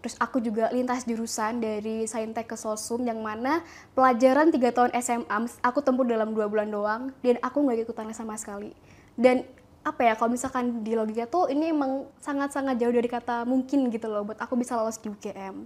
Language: Indonesian